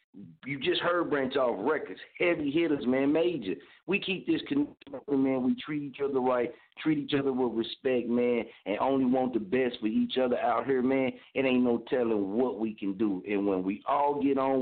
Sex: male